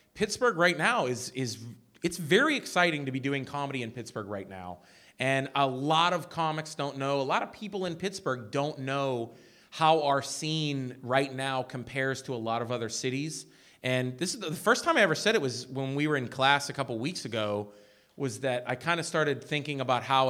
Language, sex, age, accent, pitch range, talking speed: English, male, 30-49, American, 115-150 Hz, 215 wpm